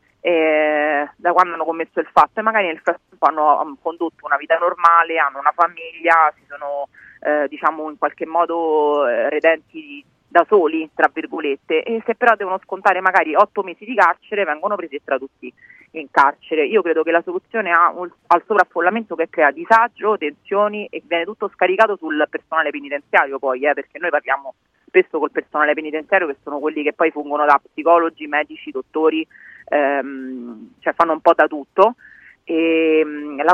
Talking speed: 170 wpm